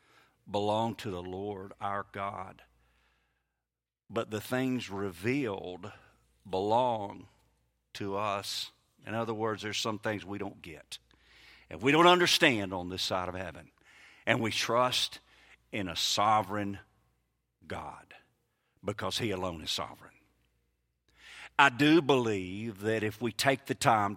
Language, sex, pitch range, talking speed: English, male, 95-120 Hz, 130 wpm